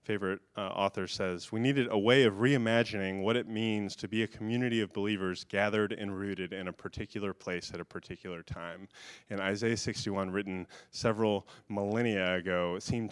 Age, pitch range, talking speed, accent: 30-49, 95-110 Hz, 170 wpm, American